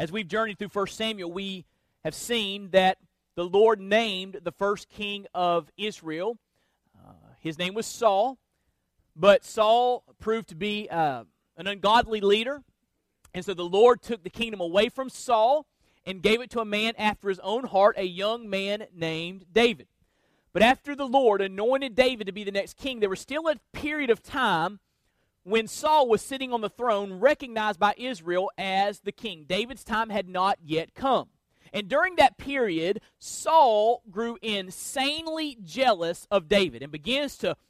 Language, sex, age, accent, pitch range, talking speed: English, male, 30-49, American, 195-245 Hz, 170 wpm